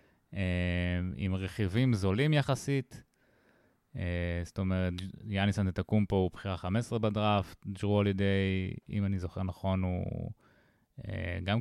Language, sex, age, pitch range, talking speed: Hebrew, male, 20-39, 90-110 Hz, 130 wpm